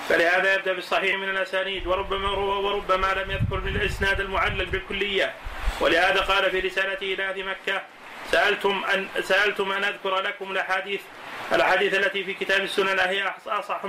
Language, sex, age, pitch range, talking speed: Arabic, male, 30-49, 195-210 Hz, 145 wpm